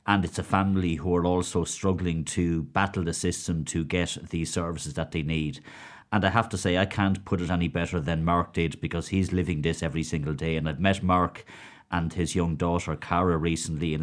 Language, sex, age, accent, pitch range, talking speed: English, male, 30-49, Irish, 80-95 Hz, 220 wpm